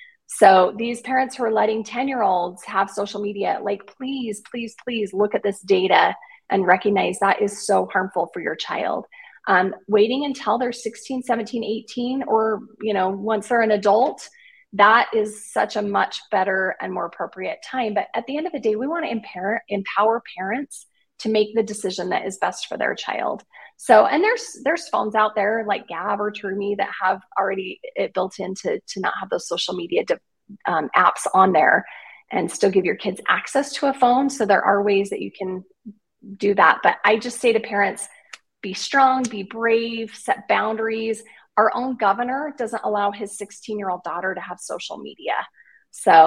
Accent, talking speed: American, 190 wpm